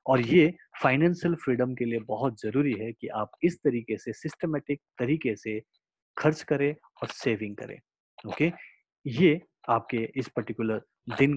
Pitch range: 110-145 Hz